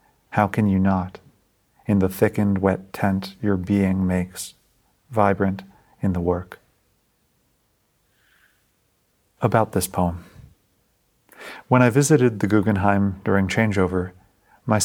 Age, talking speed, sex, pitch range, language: 40-59, 110 wpm, male, 95-105 Hz, English